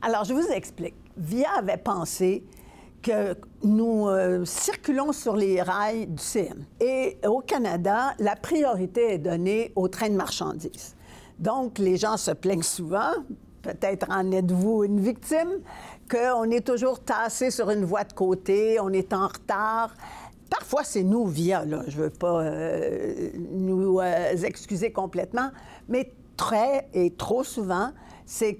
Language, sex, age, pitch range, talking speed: French, female, 60-79, 185-240 Hz, 145 wpm